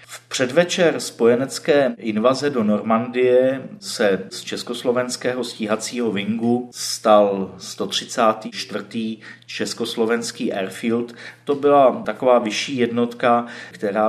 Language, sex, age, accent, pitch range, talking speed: Czech, male, 40-59, native, 100-120 Hz, 90 wpm